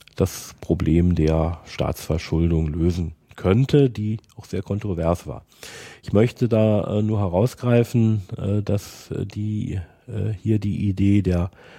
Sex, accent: male, German